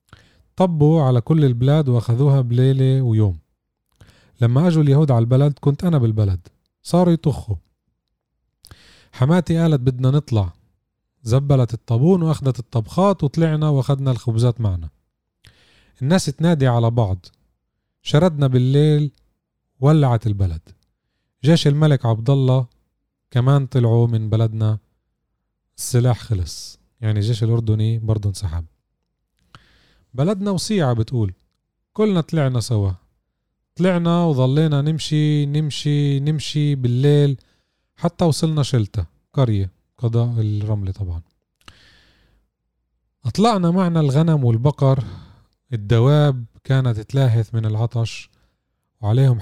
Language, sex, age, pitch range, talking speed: Arabic, male, 30-49, 110-145 Hz, 100 wpm